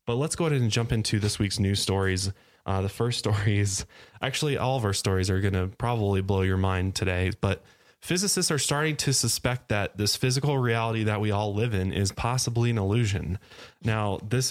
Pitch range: 100-120 Hz